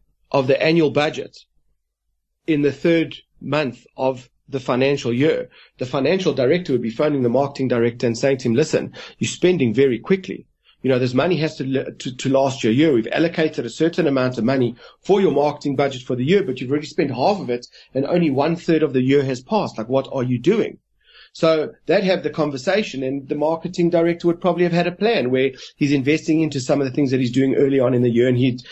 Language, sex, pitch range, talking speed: English, male, 130-165 Hz, 230 wpm